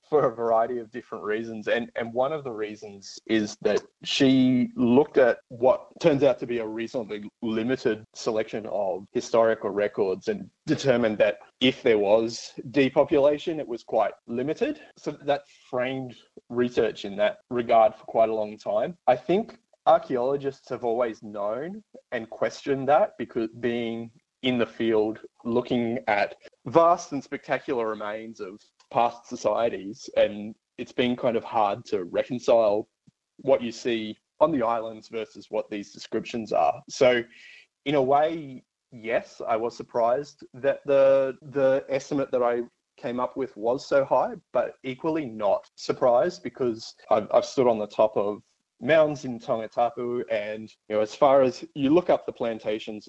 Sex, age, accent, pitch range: male, 20-39, Australian, 110-140 Hz